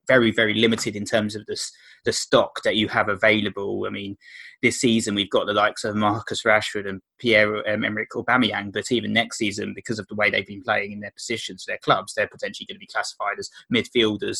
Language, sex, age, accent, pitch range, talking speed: English, male, 20-39, British, 105-125 Hz, 215 wpm